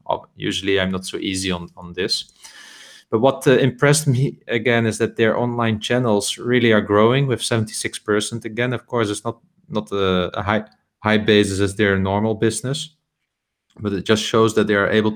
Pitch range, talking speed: 100-115 Hz, 180 wpm